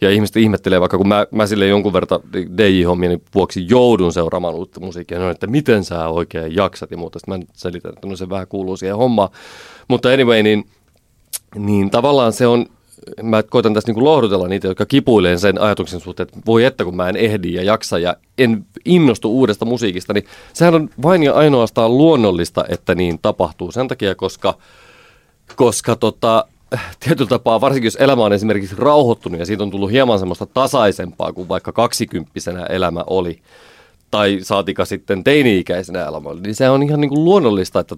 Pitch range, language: 90-115 Hz, Finnish